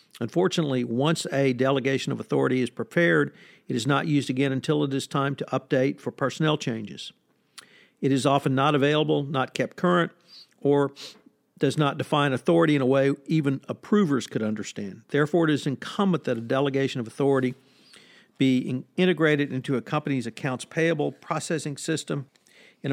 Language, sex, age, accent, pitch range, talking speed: English, male, 50-69, American, 130-155 Hz, 160 wpm